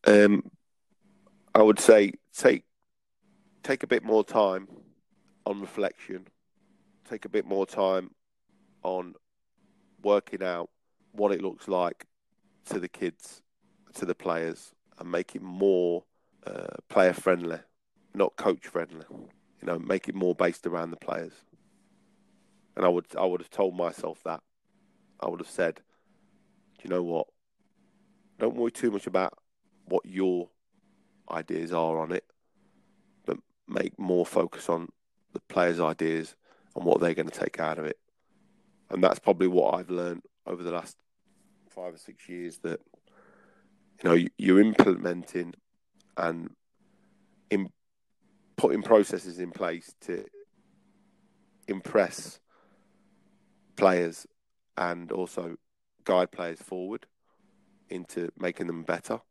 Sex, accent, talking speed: male, British, 135 wpm